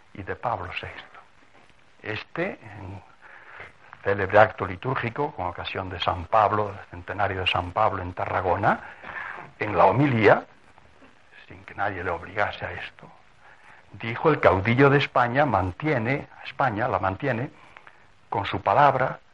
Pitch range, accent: 95-140 Hz, Spanish